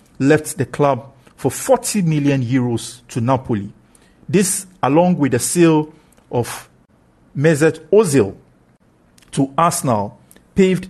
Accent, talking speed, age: Nigerian, 105 wpm, 50-69